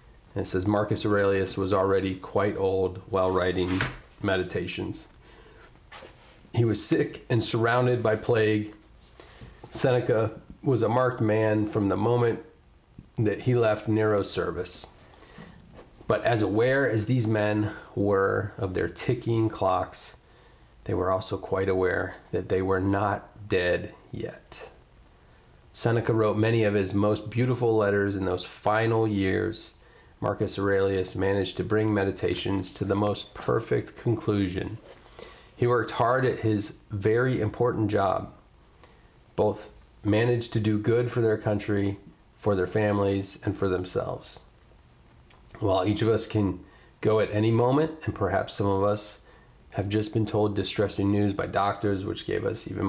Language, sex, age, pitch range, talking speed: English, male, 30-49, 100-115 Hz, 140 wpm